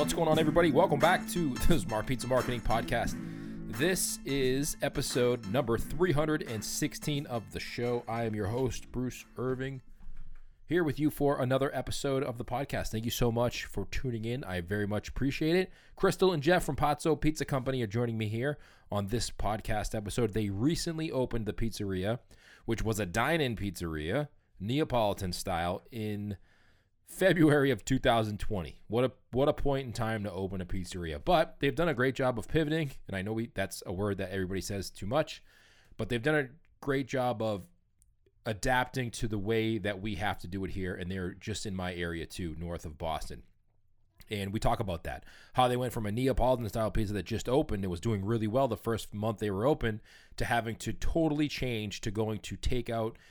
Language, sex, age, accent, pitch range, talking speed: English, male, 20-39, American, 100-135 Hz, 190 wpm